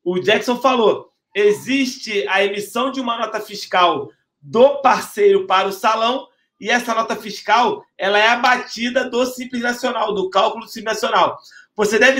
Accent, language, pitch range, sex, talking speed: Brazilian, Portuguese, 210-255 Hz, male, 155 wpm